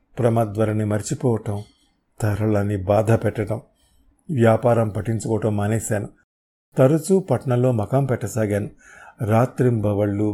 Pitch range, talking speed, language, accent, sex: 105-135 Hz, 75 wpm, Telugu, native, male